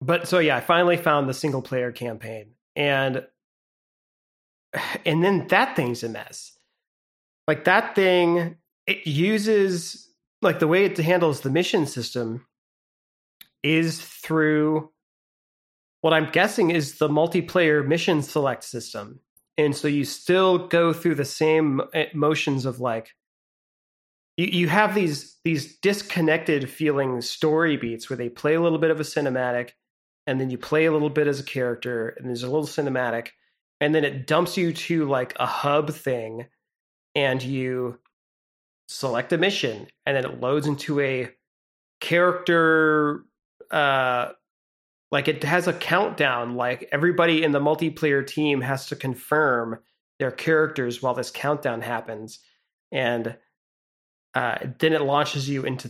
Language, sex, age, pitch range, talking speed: English, male, 30-49, 125-165 Hz, 145 wpm